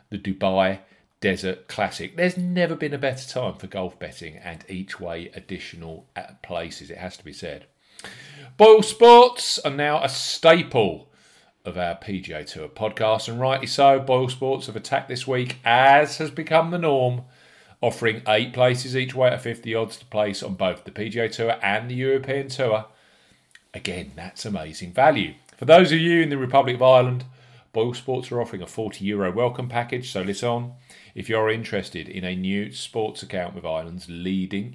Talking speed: 180 wpm